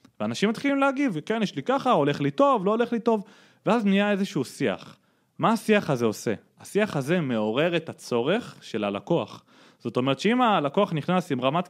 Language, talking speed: Hebrew, 185 wpm